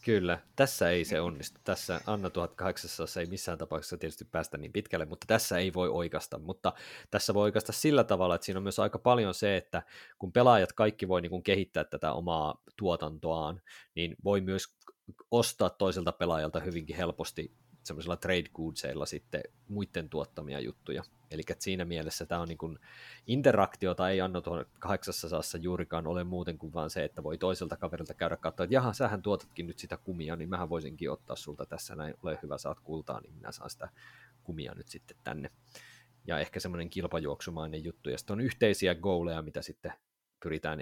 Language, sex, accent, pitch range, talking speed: Finnish, male, native, 85-105 Hz, 180 wpm